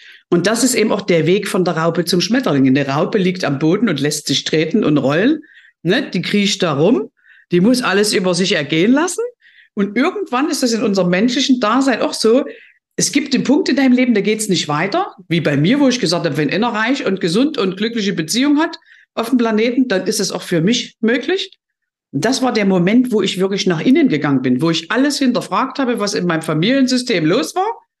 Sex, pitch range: female, 170-260 Hz